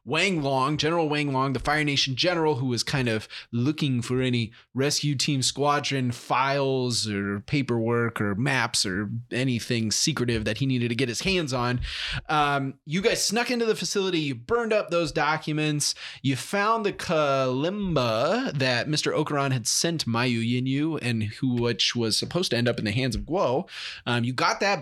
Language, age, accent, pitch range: English, 20-39, American, 120-155 Hz